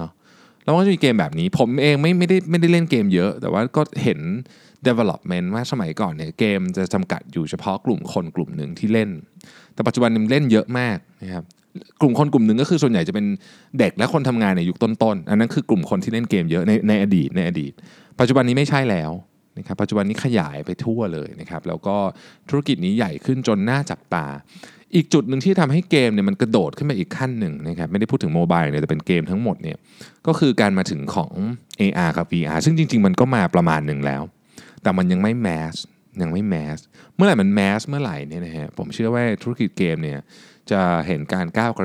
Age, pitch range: 20-39, 90-145 Hz